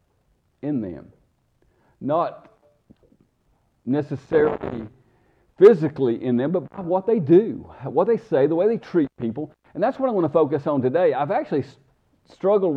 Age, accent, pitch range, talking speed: 50-69, American, 135-180 Hz, 150 wpm